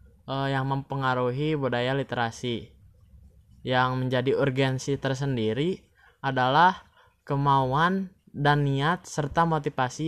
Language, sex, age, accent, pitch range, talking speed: Indonesian, male, 10-29, native, 125-160 Hz, 85 wpm